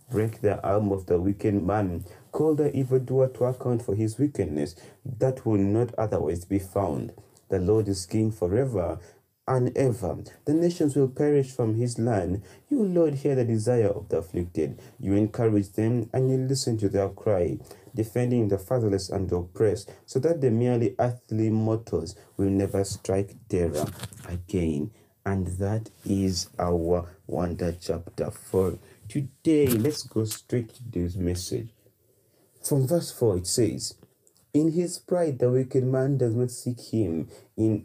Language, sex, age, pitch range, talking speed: English, male, 30-49, 100-125 Hz, 155 wpm